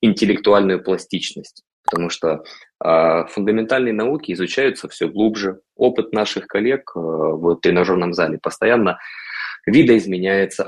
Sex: male